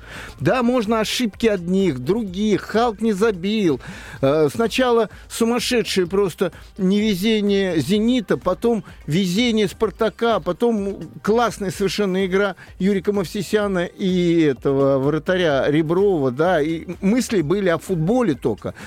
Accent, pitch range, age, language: native, 180-225 Hz, 50-69, Russian